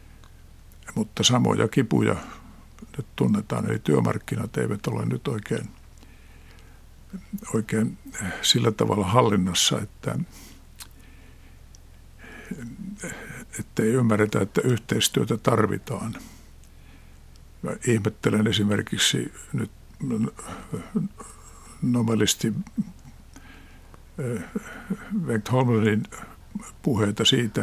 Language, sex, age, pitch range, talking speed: Finnish, male, 60-79, 90-140 Hz, 70 wpm